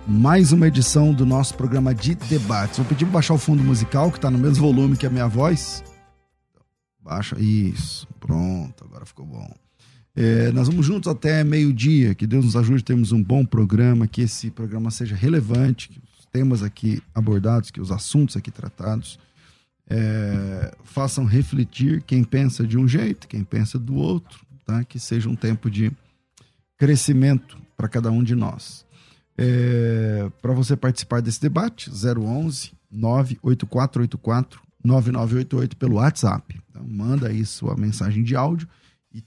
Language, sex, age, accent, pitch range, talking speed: Portuguese, male, 40-59, Brazilian, 110-140 Hz, 150 wpm